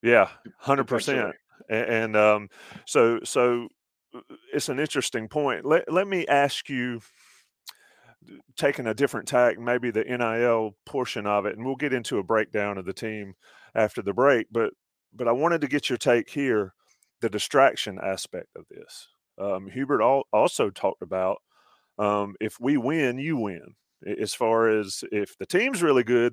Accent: American